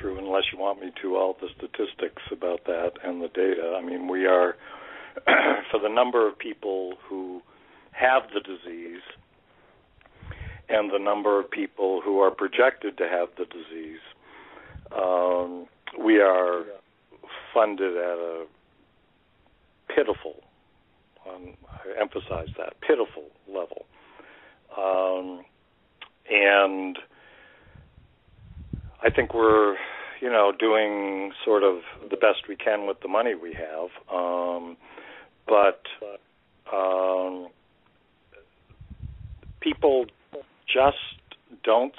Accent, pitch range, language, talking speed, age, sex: American, 90-100 Hz, English, 110 wpm, 60-79, male